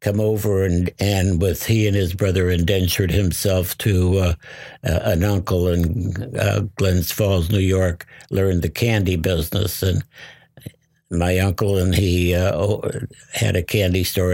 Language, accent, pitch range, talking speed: English, American, 90-105 Hz, 145 wpm